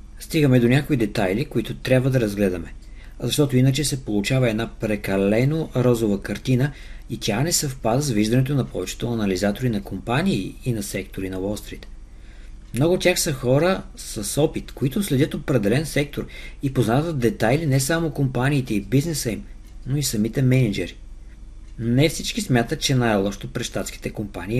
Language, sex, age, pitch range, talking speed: Bulgarian, male, 50-69, 110-145 Hz, 155 wpm